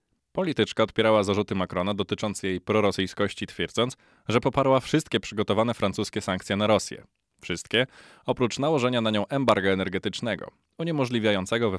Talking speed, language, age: 125 wpm, Polish, 20-39